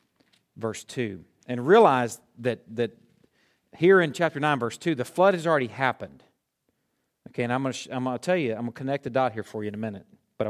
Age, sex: 40-59, male